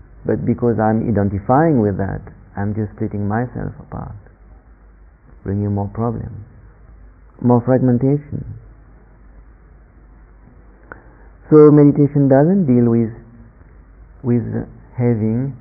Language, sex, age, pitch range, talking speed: English, male, 50-69, 100-125 Hz, 90 wpm